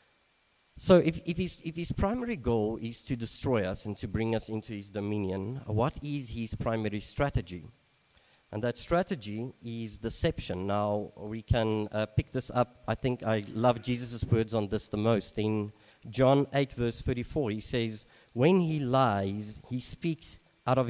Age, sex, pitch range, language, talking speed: 40-59, male, 105-130 Hz, English, 165 wpm